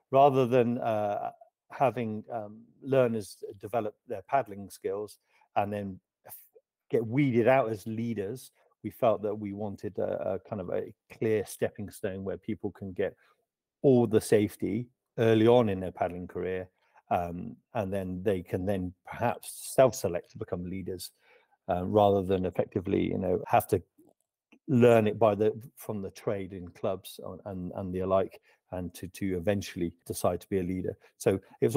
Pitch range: 95-125 Hz